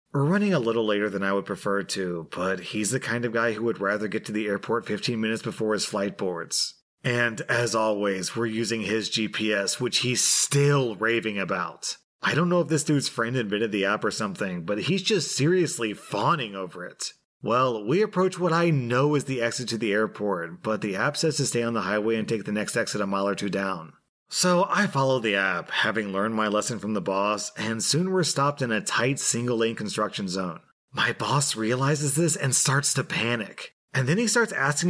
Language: English